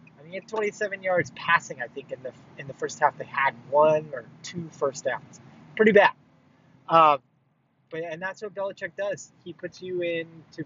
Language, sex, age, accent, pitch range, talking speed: English, male, 20-39, American, 145-185 Hz, 175 wpm